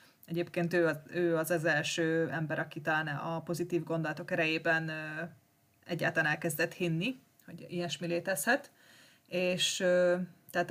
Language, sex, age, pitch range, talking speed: Hungarian, female, 20-39, 160-180 Hz, 125 wpm